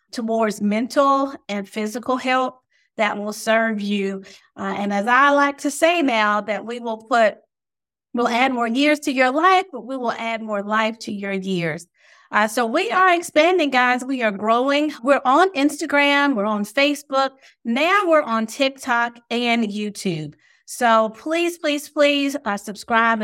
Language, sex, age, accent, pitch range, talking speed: English, female, 40-59, American, 210-285 Hz, 165 wpm